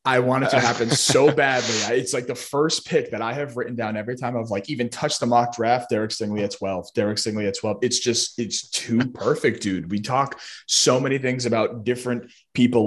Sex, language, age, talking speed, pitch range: male, English, 20-39, 225 wpm, 105-125 Hz